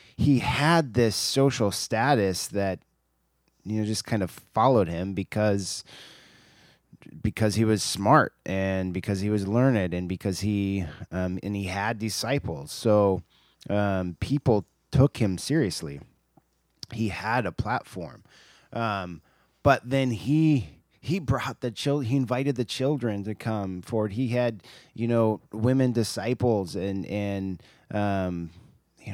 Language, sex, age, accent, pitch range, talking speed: English, male, 20-39, American, 100-130 Hz, 135 wpm